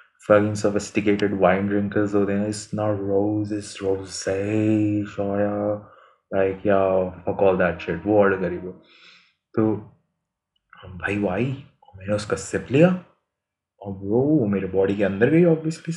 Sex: male